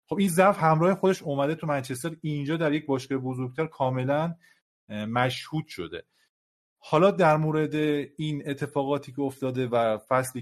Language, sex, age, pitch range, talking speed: Persian, male, 30-49, 125-155 Hz, 145 wpm